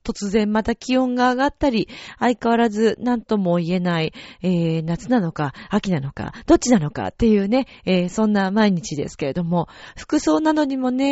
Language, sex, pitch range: Japanese, female, 185-275 Hz